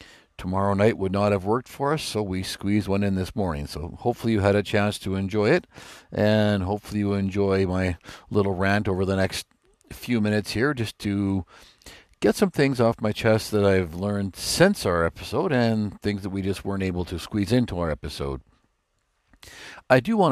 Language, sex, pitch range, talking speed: English, male, 90-110 Hz, 195 wpm